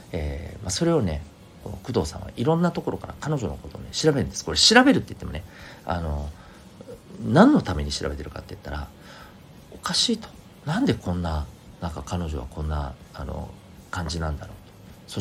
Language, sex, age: Japanese, male, 40-59